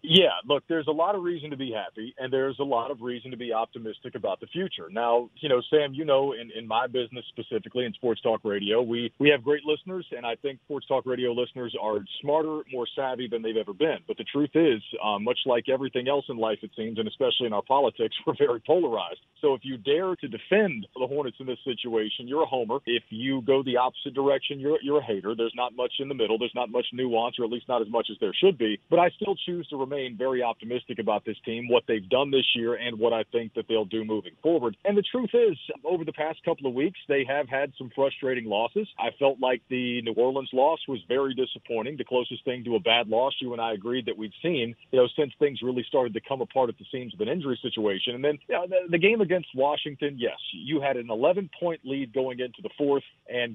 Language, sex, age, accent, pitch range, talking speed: English, male, 40-59, American, 120-145 Hz, 250 wpm